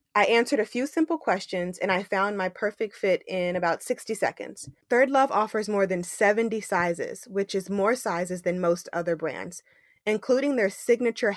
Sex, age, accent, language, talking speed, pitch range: female, 20-39, American, English, 180 wpm, 185-245 Hz